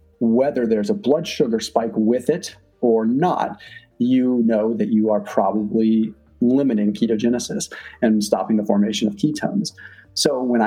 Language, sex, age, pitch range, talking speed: English, male, 30-49, 110-135 Hz, 145 wpm